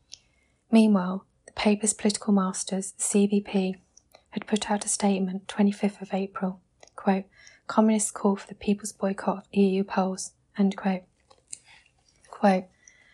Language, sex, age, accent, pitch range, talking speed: English, female, 20-39, British, 195-210 Hz, 125 wpm